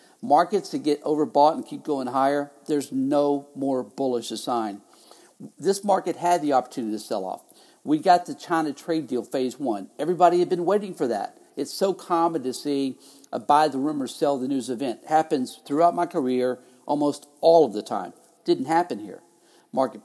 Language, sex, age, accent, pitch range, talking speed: English, male, 50-69, American, 140-180 Hz, 185 wpm